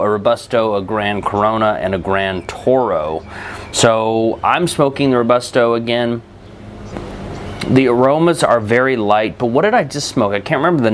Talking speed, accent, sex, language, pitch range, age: 165 wpm, American, male, English, 105-125 Hz, 30-49